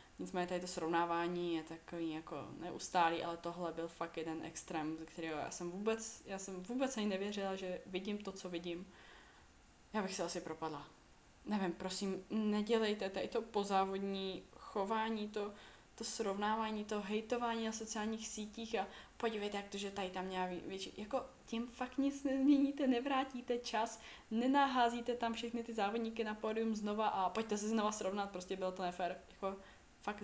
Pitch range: 185-225 Hz